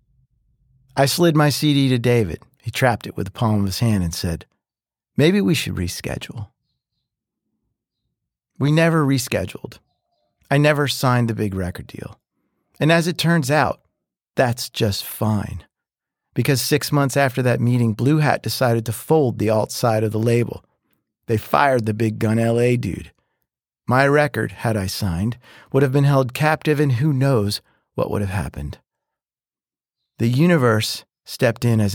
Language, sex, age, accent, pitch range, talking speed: English, male, 40-59, American, 105-140 Hz, 160 wpm